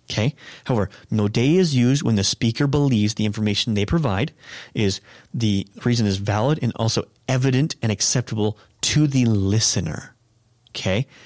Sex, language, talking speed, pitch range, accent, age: male, English, 150 wpm, 105-155 Hz, American, 30-49